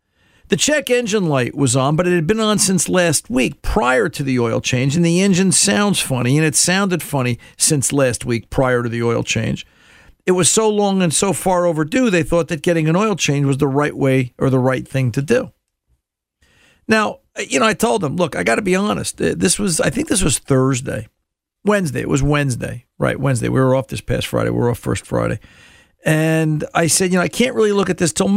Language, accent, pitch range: English, American, 135-185 Hz